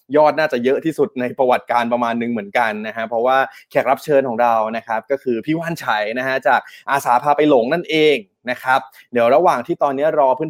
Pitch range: 120-155 Hz